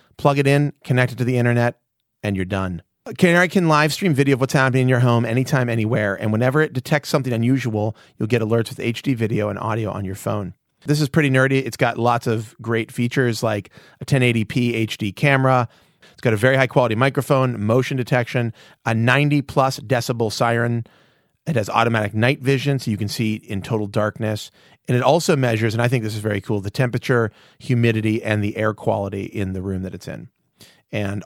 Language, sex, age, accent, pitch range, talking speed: English, male, 30-49, American, 110-135 Hz, 205 wpm